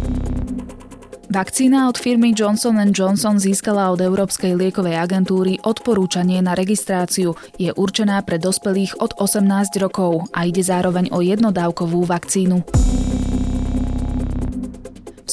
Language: Slovak